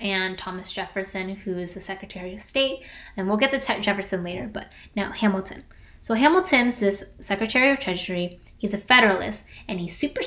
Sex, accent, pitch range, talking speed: female, American, 190-245 Hz, 180 wpm